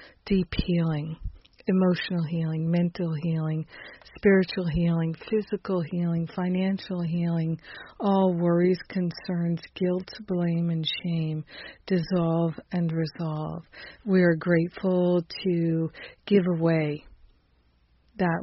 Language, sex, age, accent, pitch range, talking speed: English, female, 50-69, American, 160-185 Hz, 95 wpm